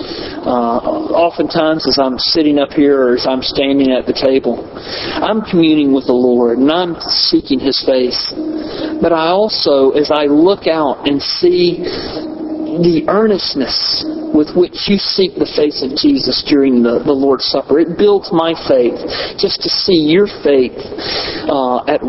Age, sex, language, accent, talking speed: 40-59, male, English, American, 160 wpm